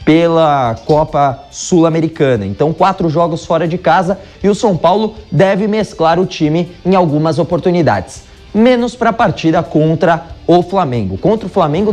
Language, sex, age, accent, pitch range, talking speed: Portuguese, male, 20-39, Brazilian, 135-180 Hz, 150 wpm